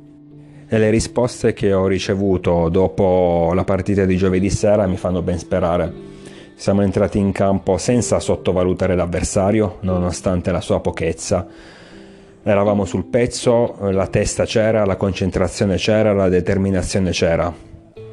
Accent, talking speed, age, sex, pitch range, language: native, 125 wpm, 30-49, male, 90-110 Hz, Italian